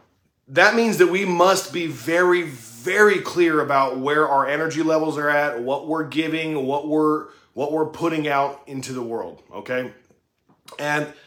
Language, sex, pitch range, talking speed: English, male, 130-160 Hz, 160 wpm